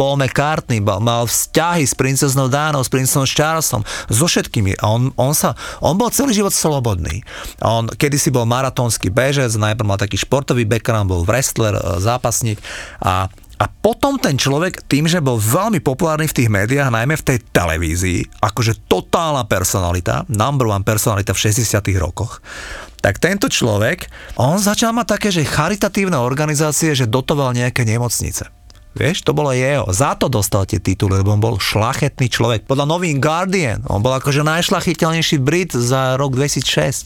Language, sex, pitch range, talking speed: Slovak, male, 110-155 Hz, 155 wpm